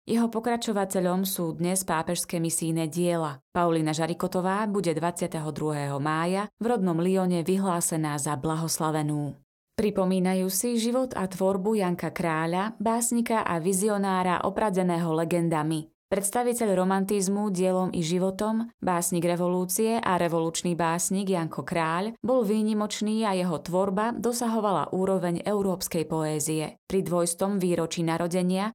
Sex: female